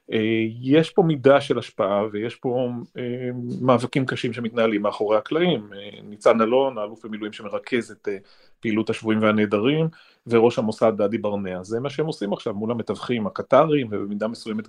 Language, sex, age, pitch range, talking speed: Hebrew, male, 30-49, 105-125 Hz, 160 wpm